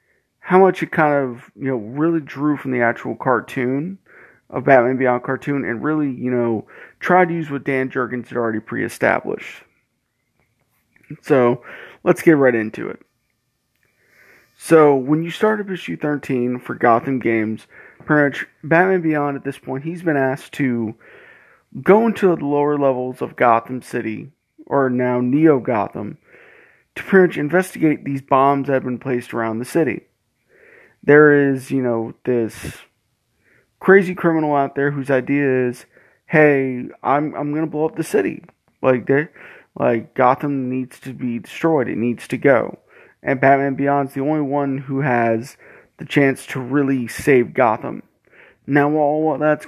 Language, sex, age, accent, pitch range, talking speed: English, male, 30-49, American, 125-155 Hz, 160 wpm